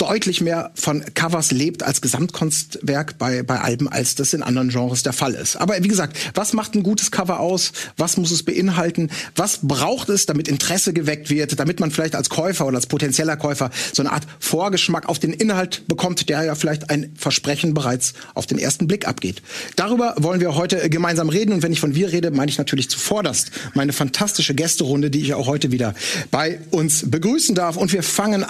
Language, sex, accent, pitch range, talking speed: German, male, German, 145-185 Hz, 205 wpm